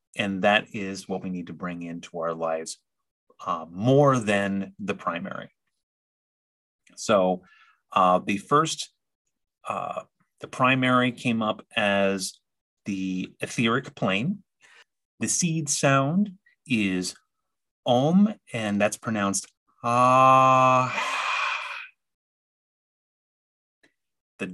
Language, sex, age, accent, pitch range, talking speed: English, male, 30-49, American, 100-145 Hz, 95 wpm